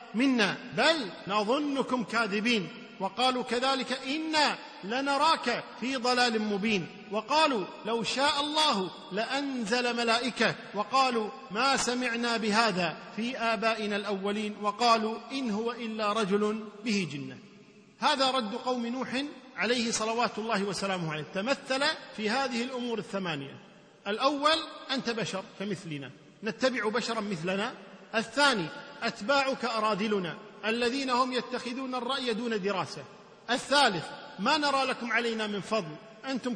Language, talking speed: Arabic, 110 wpm